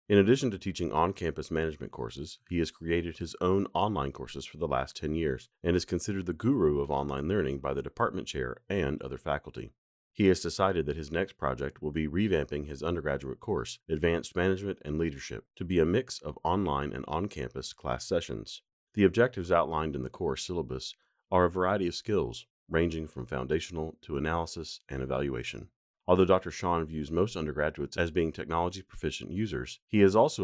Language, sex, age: English, male, 40-59